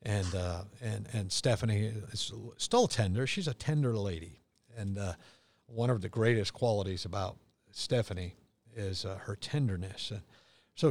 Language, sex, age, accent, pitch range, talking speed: English, male, 50-69, American, 100-120 Hz, 150 wpm